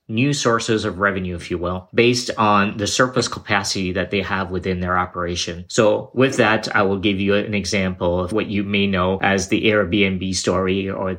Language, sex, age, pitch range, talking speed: English, male, 30-49, 95-110 Hz, 200 wpm